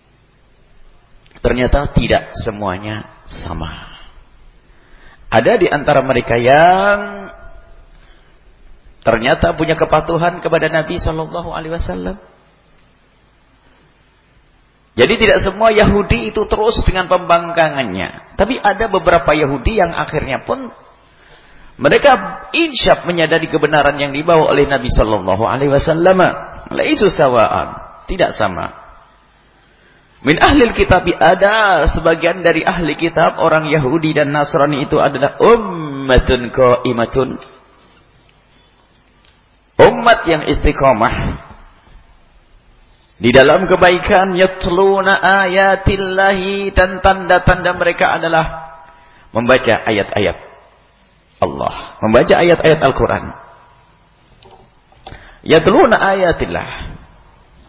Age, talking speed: 40-59, 85 wpm